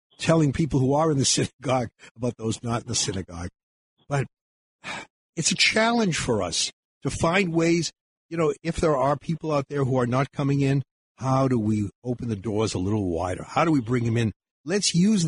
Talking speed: 205 wpm